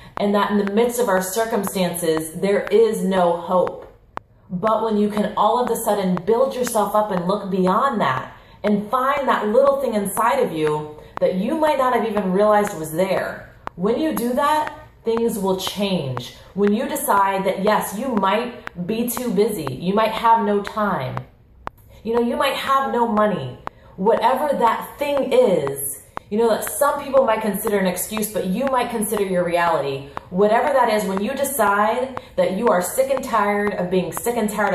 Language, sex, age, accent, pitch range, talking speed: English, female, 30-49, American, 185-230 Hz, 190 wpm